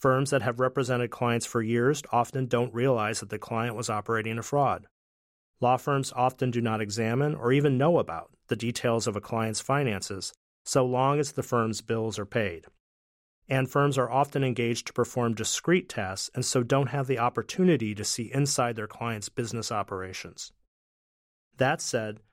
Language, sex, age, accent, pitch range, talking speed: English, male, 40-59, American, 110-140 Hz, 175 wpm